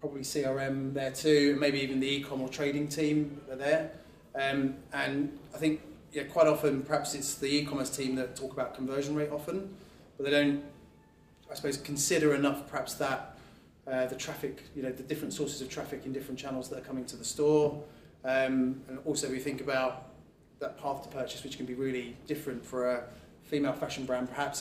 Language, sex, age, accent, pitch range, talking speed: English, male, 20-39, British, 125-145 Hz, 195 wpm